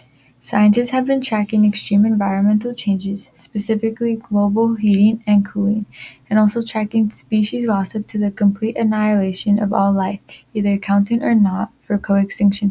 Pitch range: 195-225 Hz